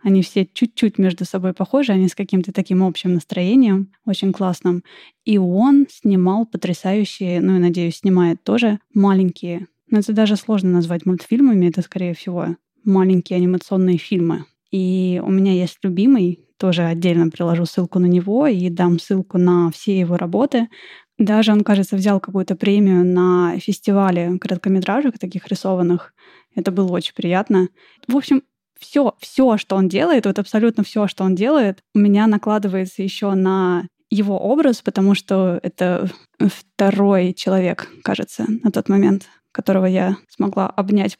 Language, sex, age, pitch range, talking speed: Russian, female, 20-39, 185-225 Hz, 150 wpm